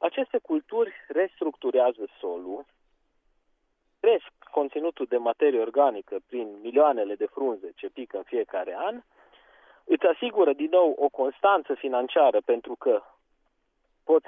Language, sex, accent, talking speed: Romanian, male, native, 120 wpm